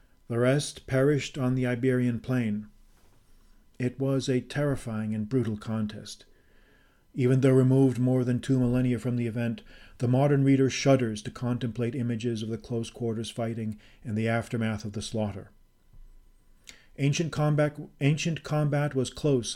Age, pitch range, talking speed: 40-59, 115-135 Hz, 145 wpm